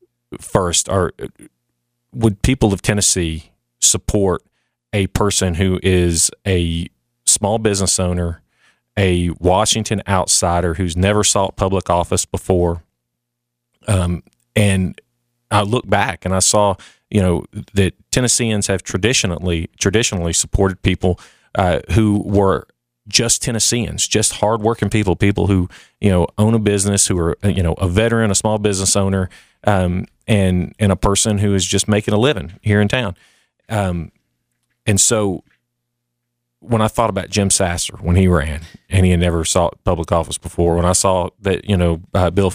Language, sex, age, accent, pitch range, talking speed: English, male, 40-59, American, 85-105 Hz, 150 wpm